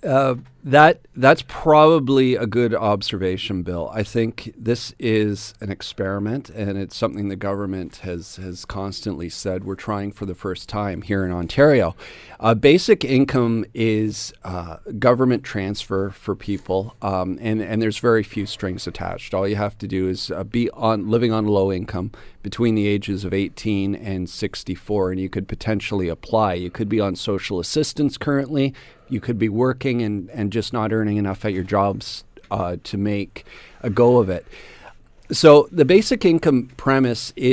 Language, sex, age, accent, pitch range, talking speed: English, male, 40-59, American, 100-120 Hz, 170 wpm